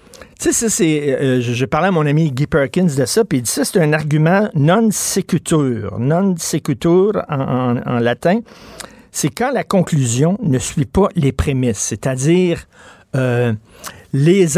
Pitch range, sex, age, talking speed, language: 130-180 Hz, male, 50-69, 150 wpm, French